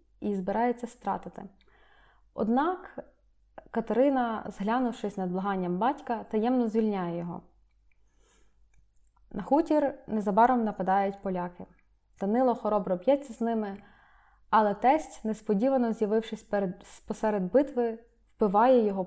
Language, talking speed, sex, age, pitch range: Ukrainian, 100 wpm, female, 20-39, 195-235 Hz